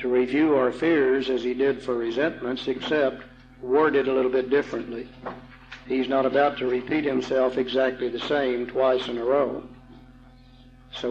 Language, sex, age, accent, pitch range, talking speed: English, male, 60-79, American, 130-145 Hz, 155 wpm